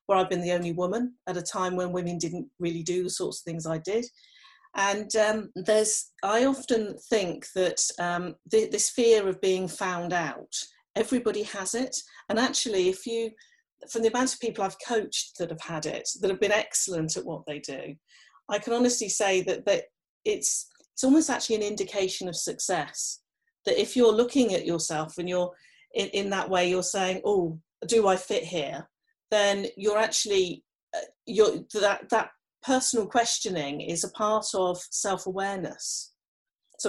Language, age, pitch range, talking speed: English, 40-59, 180-225 Hz, 175 wpm